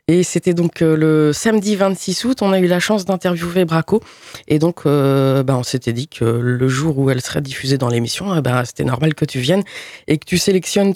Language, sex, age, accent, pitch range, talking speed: French, female, 20-39, French, 150-195 Hz, 220 wpm